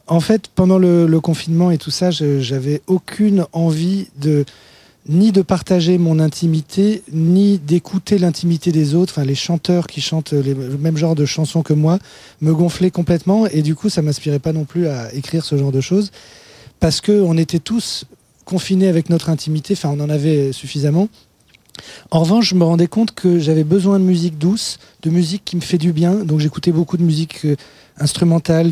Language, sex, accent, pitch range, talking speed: French, male, French, 155-185 Hz, 195 wpm